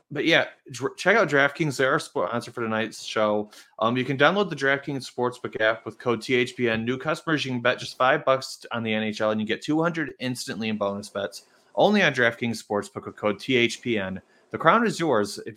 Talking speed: 200 wpm